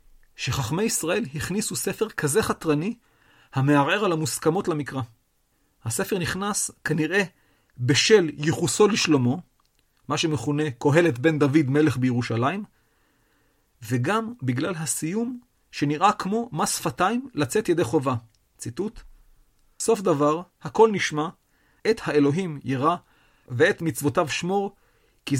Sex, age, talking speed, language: male, 40-59, 105 wpm, Hebrew